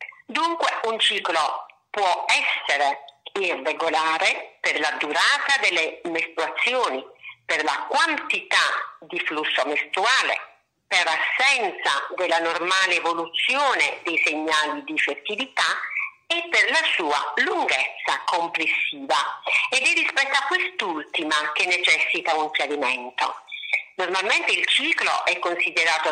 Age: 50-69